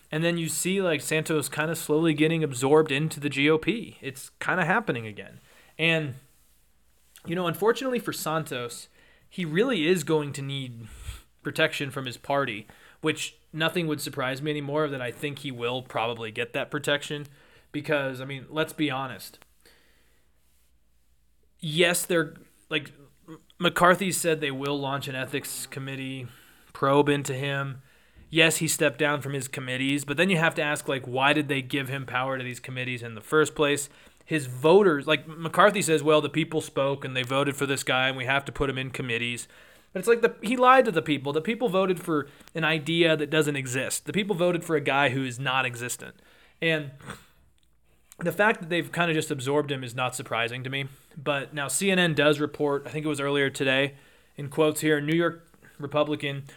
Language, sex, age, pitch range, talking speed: English, male, 20-39, 135-160 Hz, 190 wpm